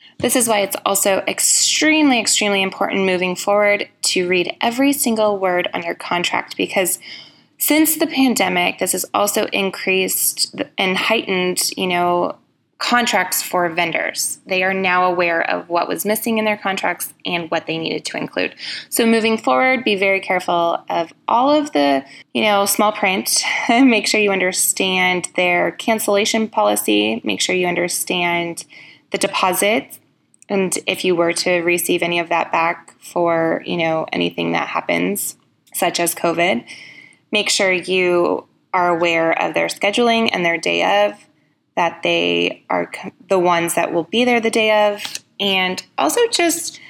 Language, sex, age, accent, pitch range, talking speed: English, female, 20-39, American, 170-215 Hz, 155 wpm